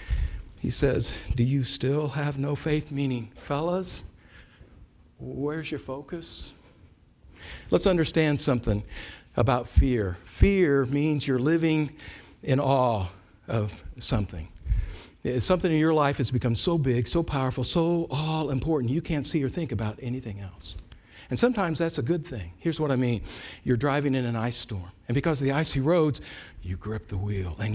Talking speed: 160 wpm